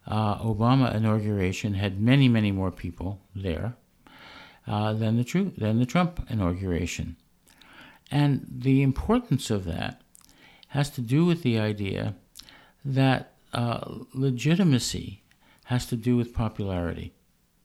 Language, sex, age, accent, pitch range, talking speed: English, male, 50-69, American, 100-130 Hz, 120 wpm